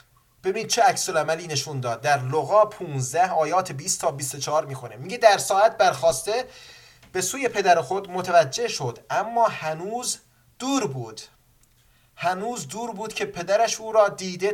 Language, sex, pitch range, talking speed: English, male, 130-195 Hz, 150 wpm